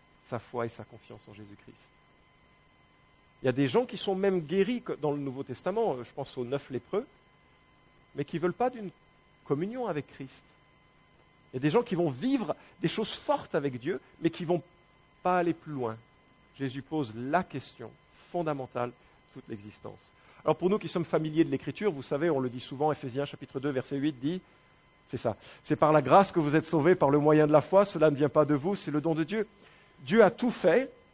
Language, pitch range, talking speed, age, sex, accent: English, 140-180 Hz, 220 wpm, 50-69, male, French